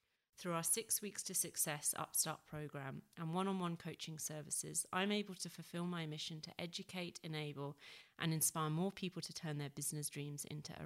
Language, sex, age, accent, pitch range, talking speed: English, female, 30-49, British, 150-180 Hz, 190 wpm